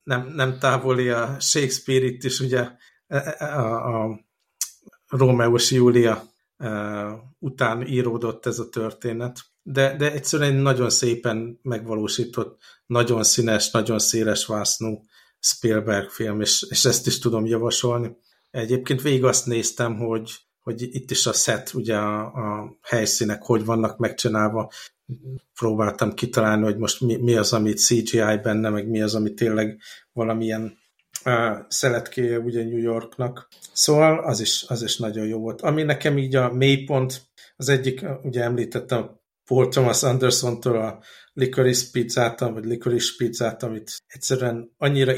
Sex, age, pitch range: male, 60-79, 110-130 Hz